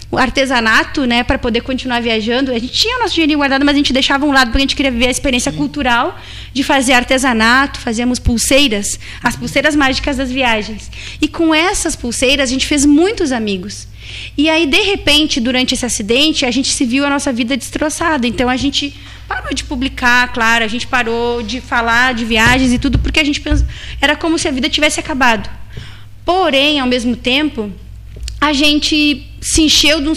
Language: Portuguese